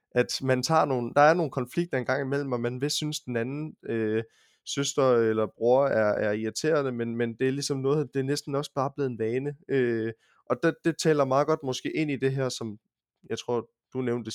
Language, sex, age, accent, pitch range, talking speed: Danish, male, 20-39, native, 115-135 Hz, 220 wpm